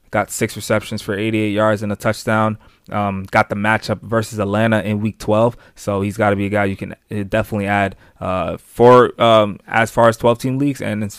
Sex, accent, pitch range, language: male, American, 100-110 Hz, English